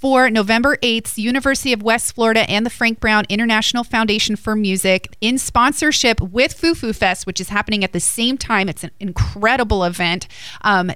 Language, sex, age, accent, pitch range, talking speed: English, female, 30-49, American, 195-240 Hz, 180 wpm